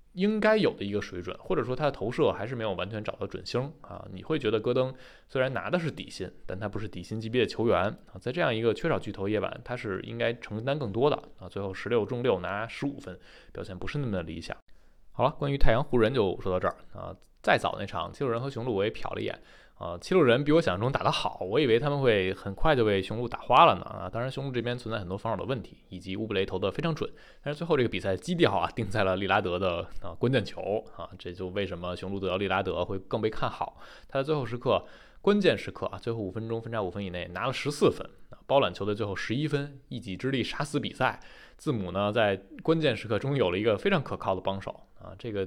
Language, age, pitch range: Chinese, 20-39, 95-125 Hz